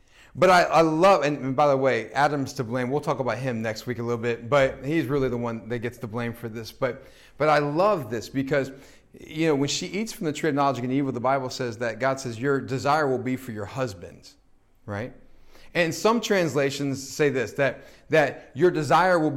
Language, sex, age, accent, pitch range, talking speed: English, male, 30-49, American, 130-165 Hz, 225 wpm